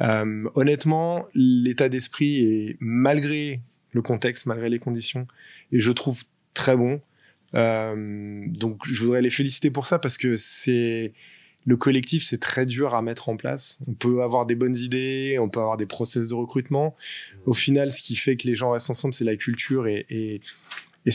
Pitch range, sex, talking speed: 115-135 Hz, male, 185 wpm